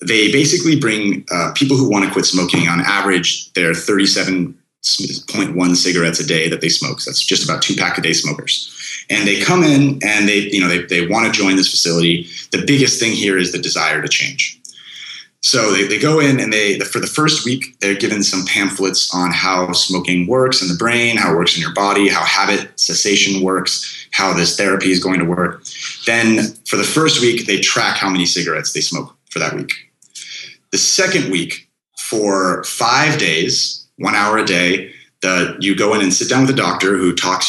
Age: 30-49